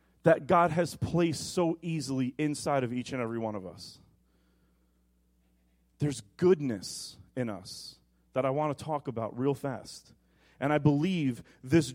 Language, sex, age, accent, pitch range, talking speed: English, male, 30-49, American, 115-180 Hz, 150 wpm